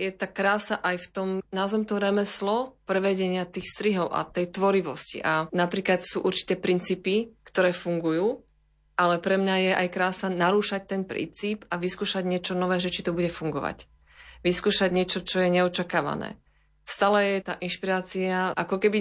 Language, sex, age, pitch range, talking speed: Slovak, female, 30-49, 170-195 Hz, 160 wpm